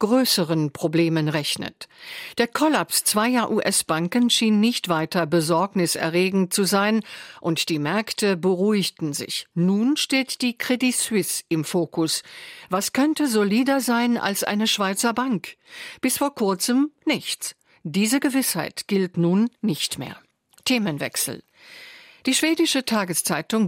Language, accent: German, German